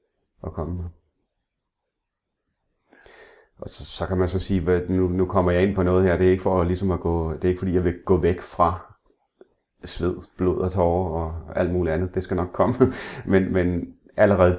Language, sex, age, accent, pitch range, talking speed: Danish, male, 30-49, native, 85-95 Hz, 200 wpm